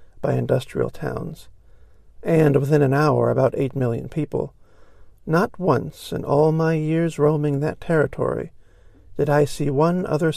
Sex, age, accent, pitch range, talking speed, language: male, 50-69, American, 95-150 Hz, 145 wpm, English